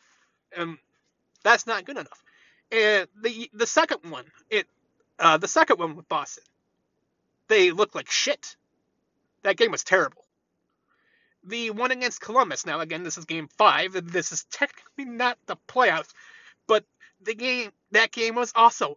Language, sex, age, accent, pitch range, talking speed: English, male, 30-49, American, 195-255 Hz, 150 wpm